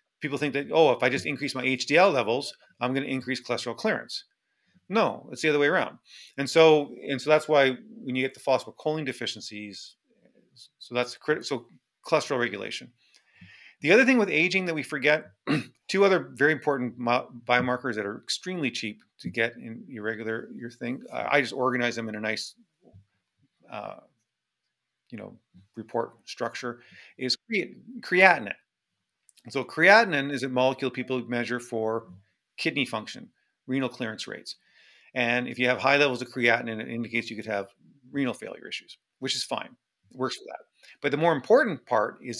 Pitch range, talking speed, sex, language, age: 115-145 Hz, 175 wpm, male, English, 40-59